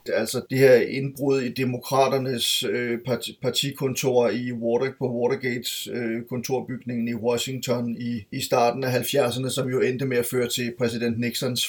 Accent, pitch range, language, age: native, 120-130 Hz, Danish, 30-49